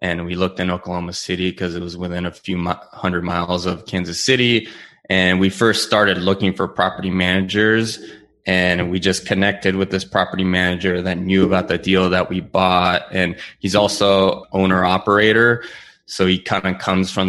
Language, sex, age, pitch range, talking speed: English, male, 20-39, 90-95 Hz, 175 wpm